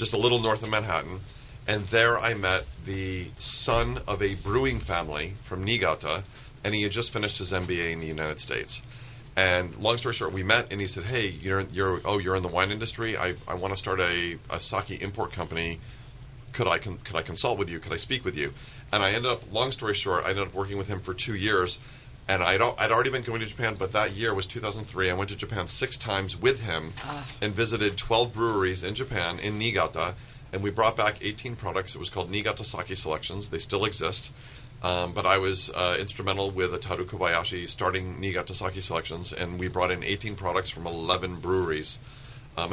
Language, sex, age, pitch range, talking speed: English, male, 40-59, 95-115 Hz, 215 wpm